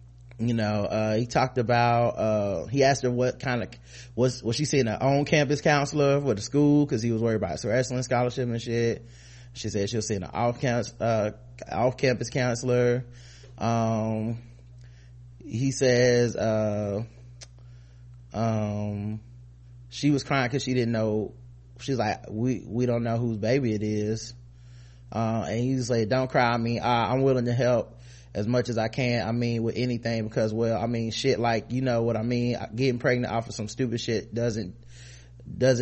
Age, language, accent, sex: 20-39, English, American, male